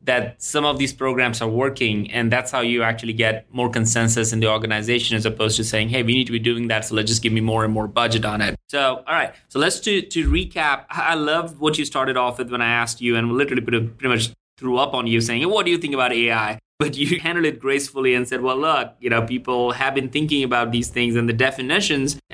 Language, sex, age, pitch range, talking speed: English, male, 20-39, 115-130 Hz, 260 wpm